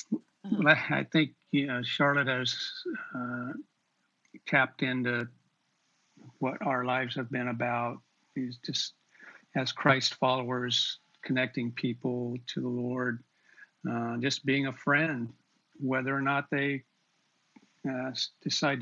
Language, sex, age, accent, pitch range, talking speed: English, male, 50-69, American, 125-145 Hz, 115 wpm